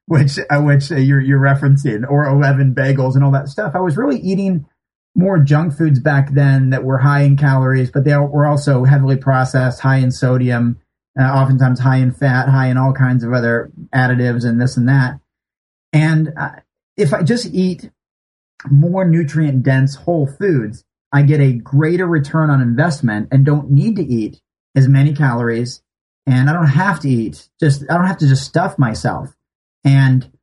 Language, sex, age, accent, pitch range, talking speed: English, male, 30-49, American, 125-145 Hz, 185 wpm